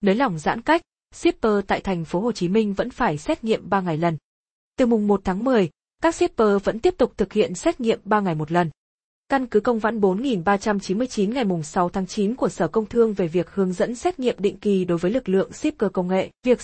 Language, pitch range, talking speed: Vietnamese, 185-240 Hz, 240 wpm